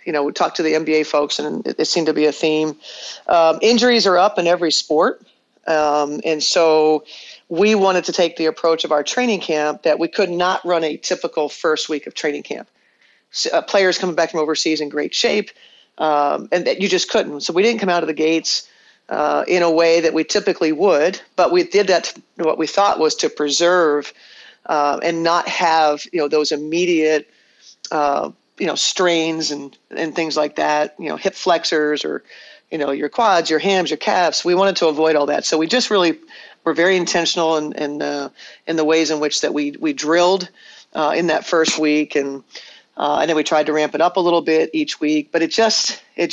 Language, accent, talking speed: English, American, 220 wpm